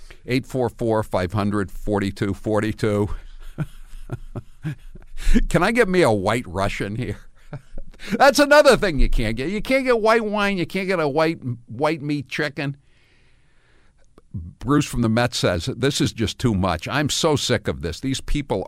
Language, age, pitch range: English, 60-79, 80-120 Hz